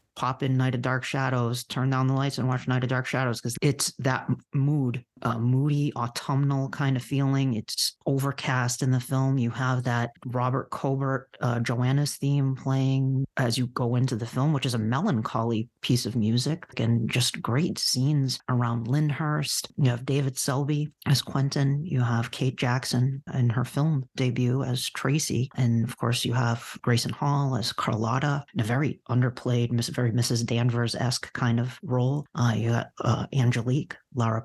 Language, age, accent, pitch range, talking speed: English, 40-59, American, 120-140 Hz, 175 wpm